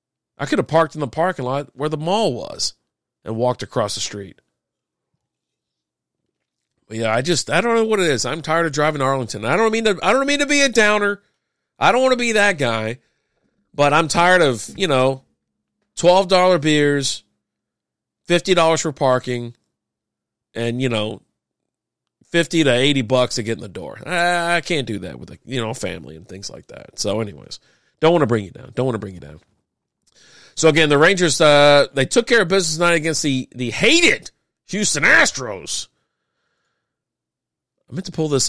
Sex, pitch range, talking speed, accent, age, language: male, 115-175 Hz, 195 wpm, American, 40-59, English